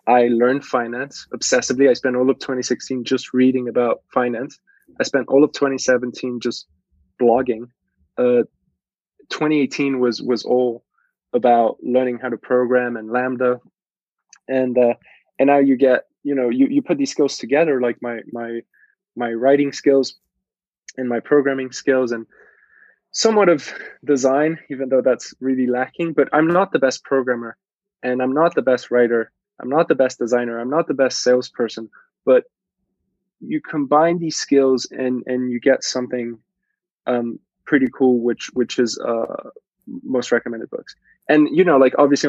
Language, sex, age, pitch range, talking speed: English, male, 20-39, 120-145 Hz, 160 wpm